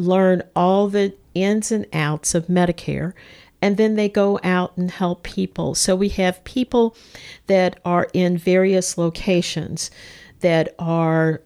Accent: American